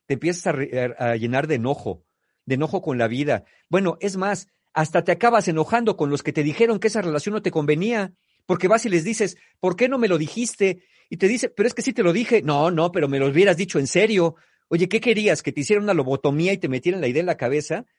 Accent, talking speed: Mexican, 255 wpm